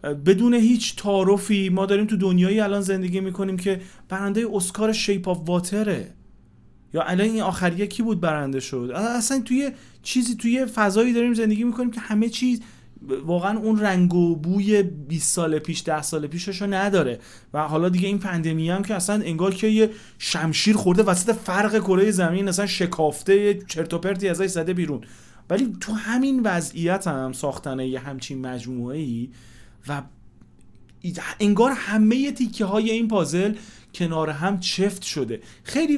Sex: male